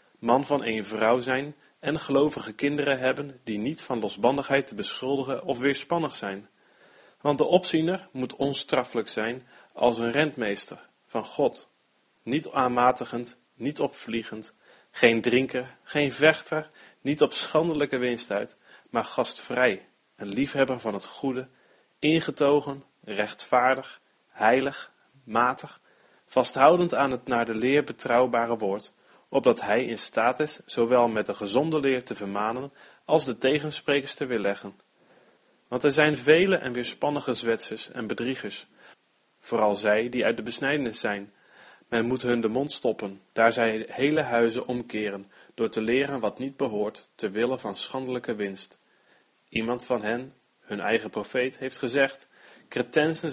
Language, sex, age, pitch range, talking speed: Dutch, male, 40-59, 115-140 Hz, 140 wpm